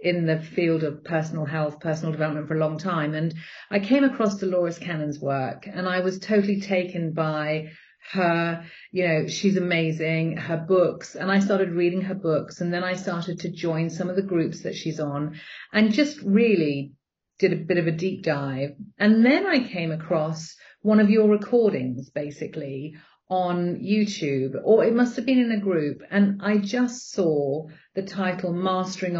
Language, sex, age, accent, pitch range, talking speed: English, female, 40-59, British, 160-205 Hz, 180 wpm